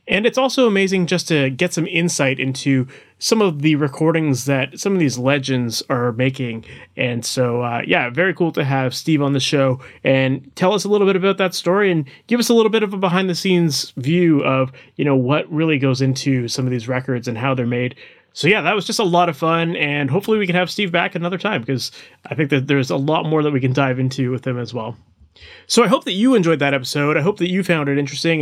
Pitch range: 135-185 Hz